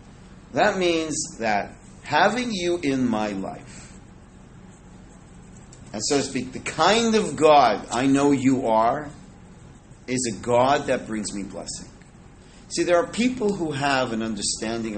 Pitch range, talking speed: 115-155 Hz, 140 wpm